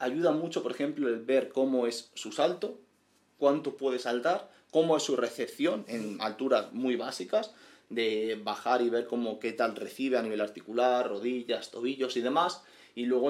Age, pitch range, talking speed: 30-49, 115-145 Hz, 170 wpm